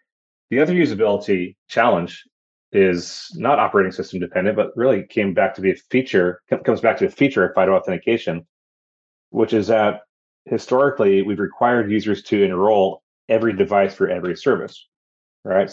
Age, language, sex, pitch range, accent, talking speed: 30-49, English, male, 95-110 Hz, American, 155 wpm